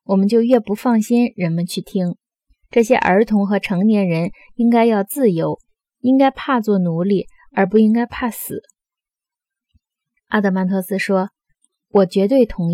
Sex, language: female, Chinese